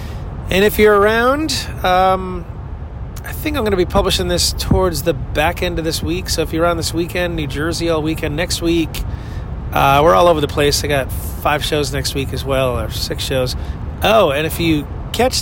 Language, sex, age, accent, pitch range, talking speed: English, male, 30-49, American, 110-180 Hz, 210 wpm